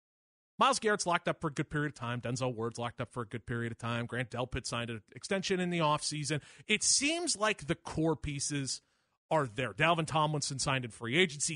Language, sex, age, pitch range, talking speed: English, male, 30-49, 120-165 Hz, 220 wpm